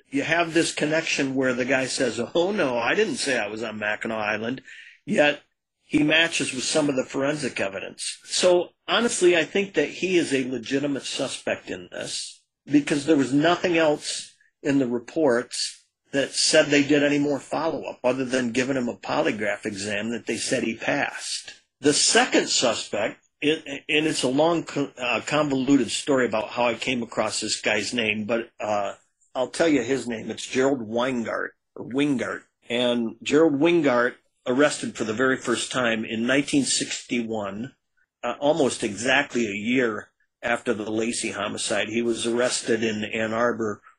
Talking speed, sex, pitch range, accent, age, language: 165 wpm, male, 115-145 Hz, American, 50-69, English